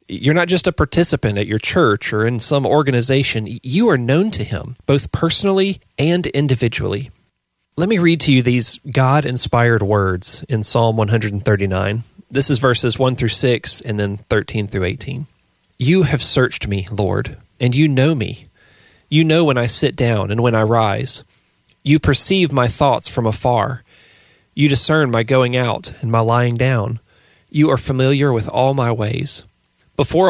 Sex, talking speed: male, 170 wpm